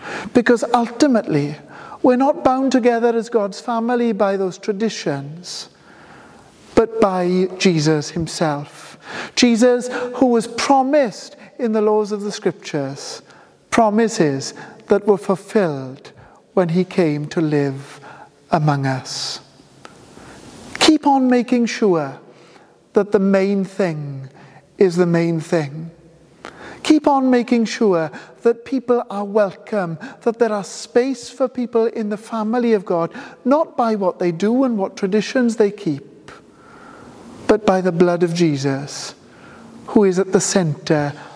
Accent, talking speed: British, 130 wpm